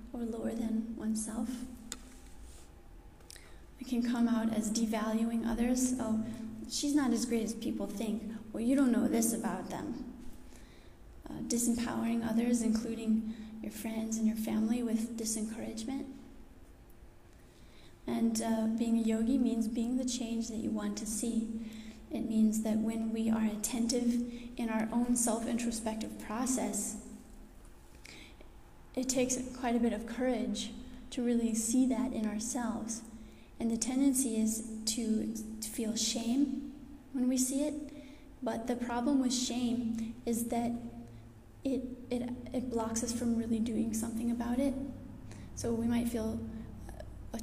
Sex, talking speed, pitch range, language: female, 140 wpm, 225-250 Hz, English